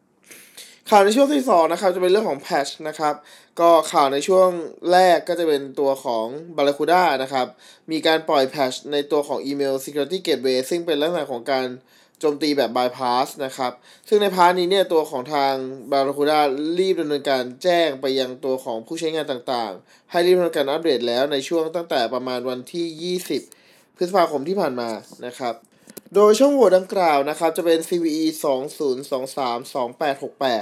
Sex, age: male, 20-39